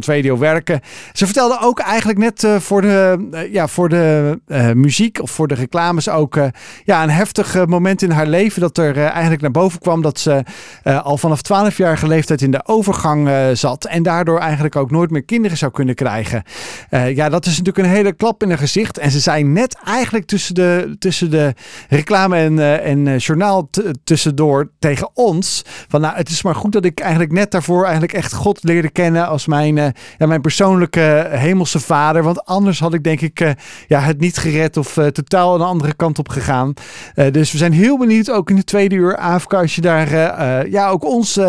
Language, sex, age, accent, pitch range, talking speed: Dutch, male, 40-59, Dutch, 150-190 Hz, 205 wpm